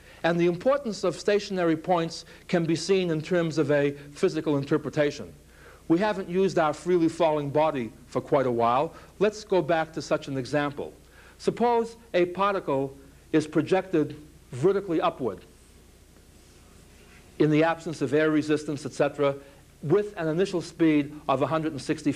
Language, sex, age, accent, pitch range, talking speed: English, male, 60-79, American, 140-180 Hz, 145 wpm